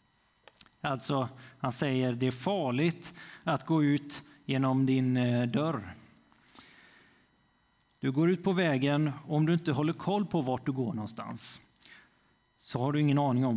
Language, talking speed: Swedish, 145 wpm